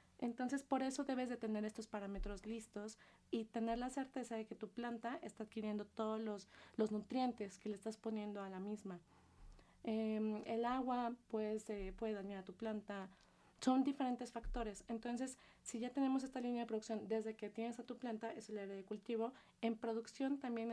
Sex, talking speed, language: female, 190 wpm, Spanish